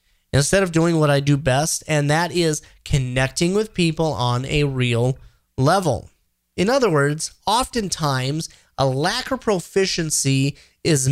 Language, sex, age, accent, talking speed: English, male, 30-49, American, 140 wpm